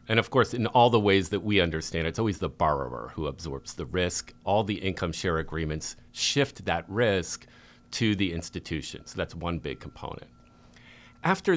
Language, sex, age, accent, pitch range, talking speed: English, male, 40-59, American, 95-125 Hz, 180 wpm